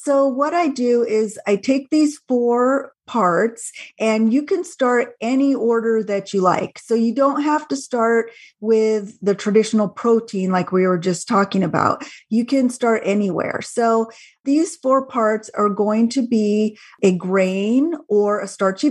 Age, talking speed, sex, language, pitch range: 40-59, 165 wpm, female, English, 200-245 Hz